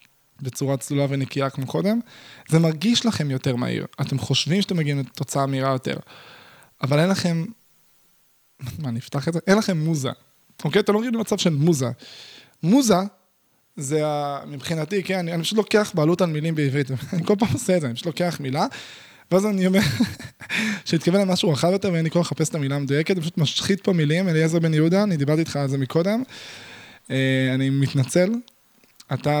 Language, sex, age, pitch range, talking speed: Hebrew, male, 20-39, 135-180 Hz, 155 wpm